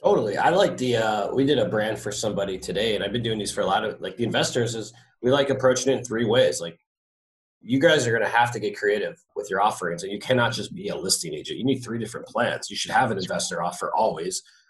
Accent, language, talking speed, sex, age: American, English, 265 wpm, male, 30-49